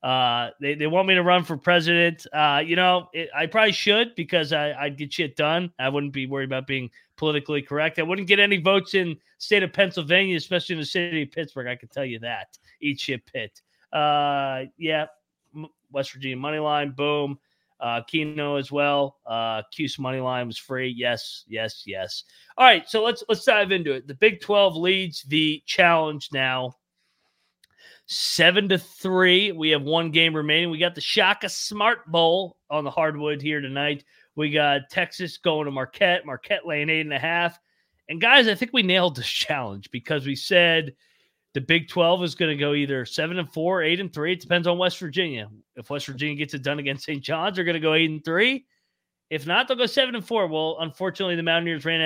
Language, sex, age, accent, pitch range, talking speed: English, male, 30-49, American, 145-180 Hz, 200 wpm